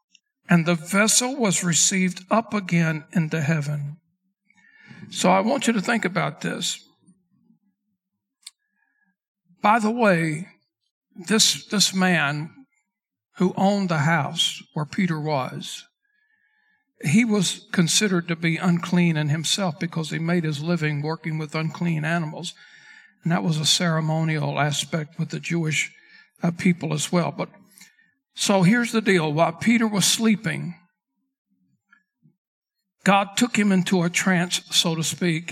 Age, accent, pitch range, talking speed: 60-79, American, 165-205 Hz, 130 wpm